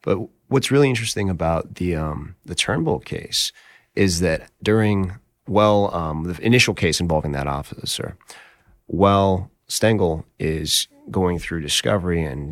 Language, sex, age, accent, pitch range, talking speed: English, male, 30-49, American, 75-95 Hz, 135 wpm